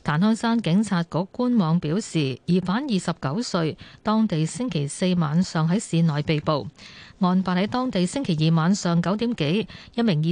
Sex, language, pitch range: female, Chinese, 165-230 Hz